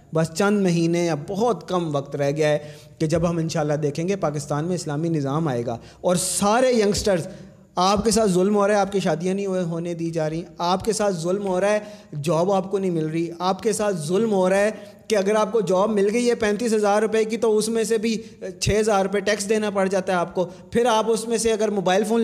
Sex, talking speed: male, 250 wpm